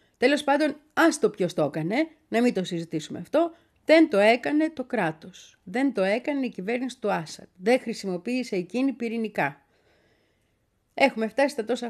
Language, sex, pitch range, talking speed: Greek, female, 180-255 Hz, 160 wpm